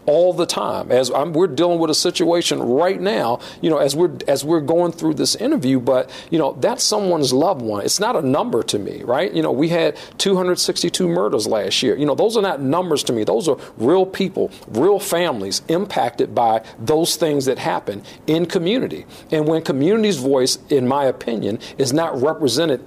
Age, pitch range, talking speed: 50-69, 145-195 Hz, 195 wpm